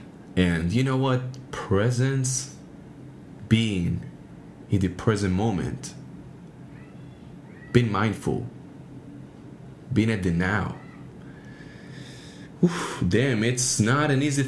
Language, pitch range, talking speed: English, 95-135 Hz, 90 wpm